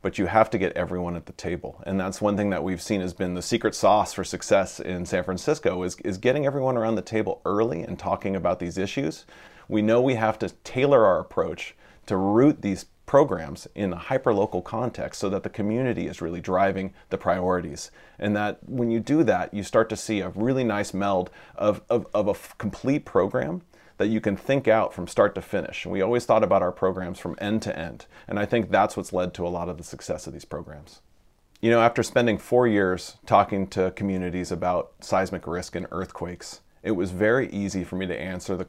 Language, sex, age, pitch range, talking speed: English, male, 30-49, 90-110 Hz, 220 wpm